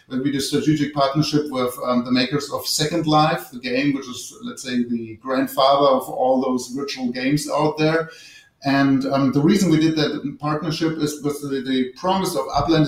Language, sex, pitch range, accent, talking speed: English, male, 130-160 Hz, German, 205 wpm